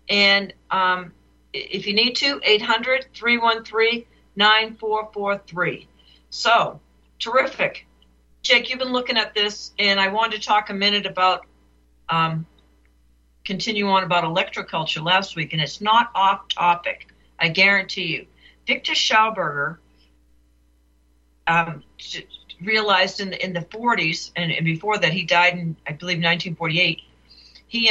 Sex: female